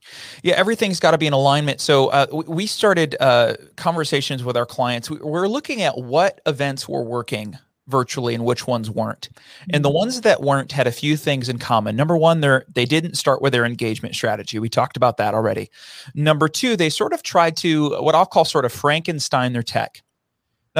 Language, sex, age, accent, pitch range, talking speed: English, male, 30-49, American, 125-165 Hz, 200 wpm